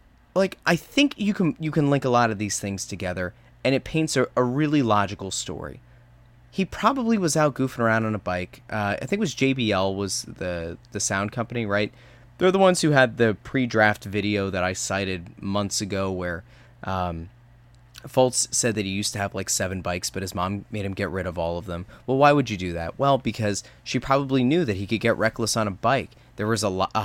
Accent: American